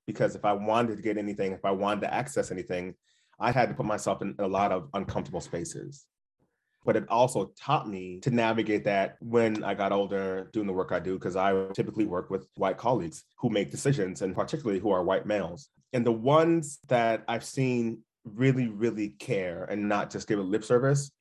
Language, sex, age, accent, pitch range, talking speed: English, male, 30-49, American, 100-125 Hz, 205 wpm